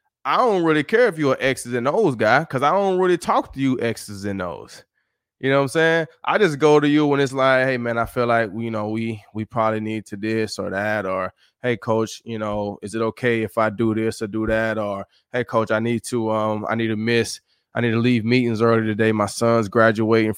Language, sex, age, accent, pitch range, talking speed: English, male, 20-39, American, 110-130 Hz, 250 wpm